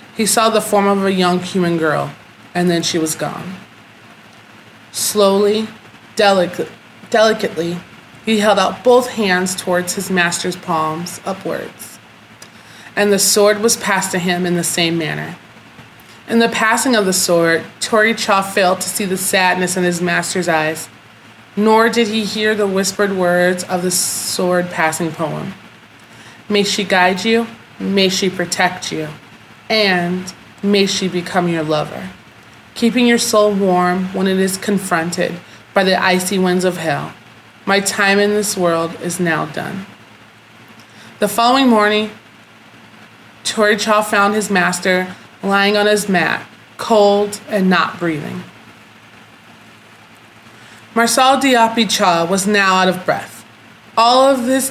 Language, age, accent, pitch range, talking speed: English, 20-39, American, 175-210 Hz, 140 wpm